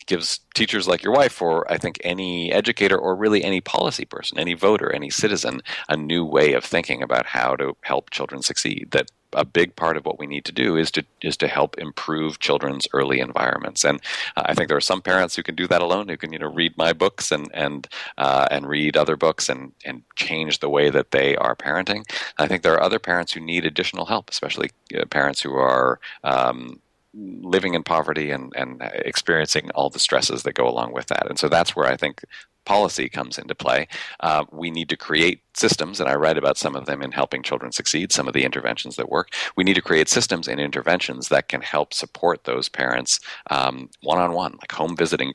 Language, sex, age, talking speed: English, male, 40-59, 220 wpm